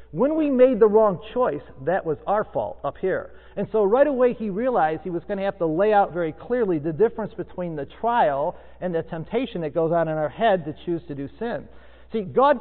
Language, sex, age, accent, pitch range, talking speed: English, male, 40-59, American, 165-240 Hz, 235 wpm